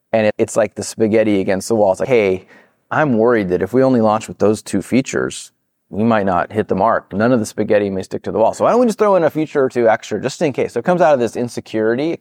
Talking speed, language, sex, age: 300 wpm, English, male, 30-49